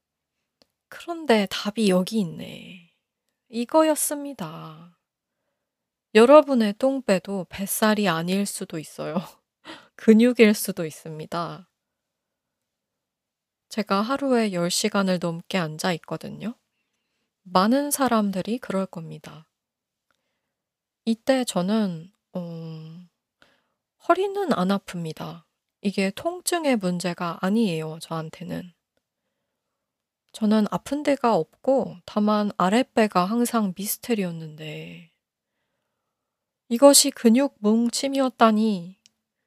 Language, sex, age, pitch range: Korean, female, 20-39, 180-230 Hz